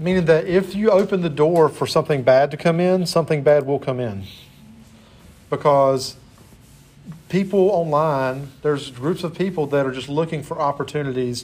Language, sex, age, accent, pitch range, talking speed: English, male, 40-59, American, 130-160 Hz, 165 wpm